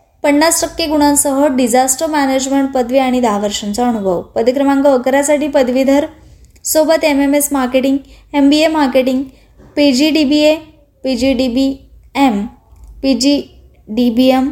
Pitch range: 250-295 Hz